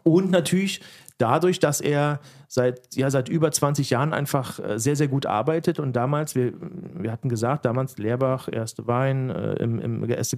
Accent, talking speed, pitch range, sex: German, 175 wpm, 135-165 Hz, male